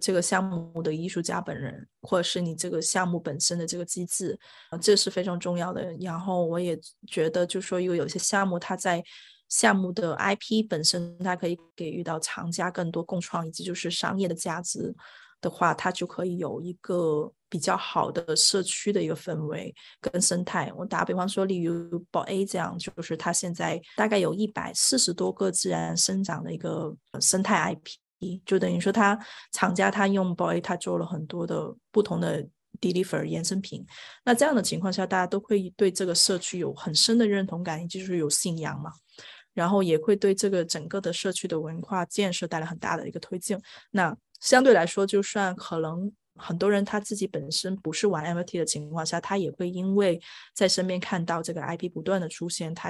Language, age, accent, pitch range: Chinese, 20-39, native, 170-195 Hz